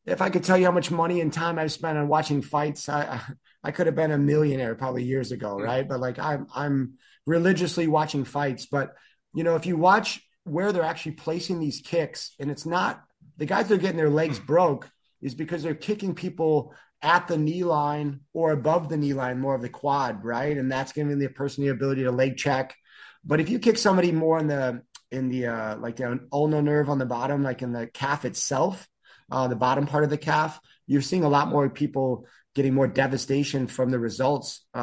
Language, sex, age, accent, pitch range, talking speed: English, male, 30-49, American, 130-160 Hz, 225 wpm